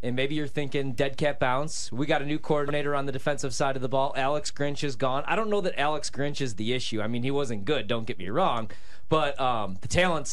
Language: English